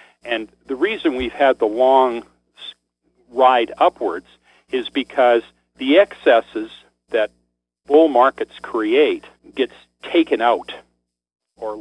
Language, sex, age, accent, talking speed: English, male, 50-69, American, 105 wpm